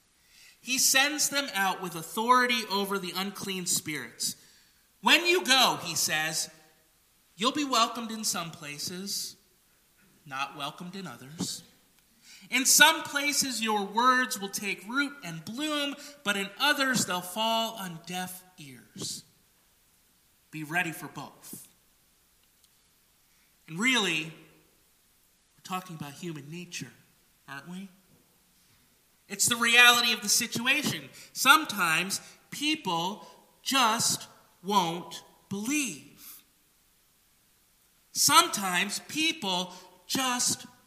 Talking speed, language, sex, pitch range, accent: 105 wpm, English, male, 170-245 Hz, American